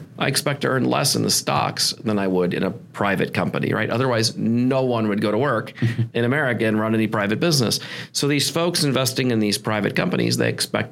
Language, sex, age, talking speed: English, male, 40-59, 220 wpm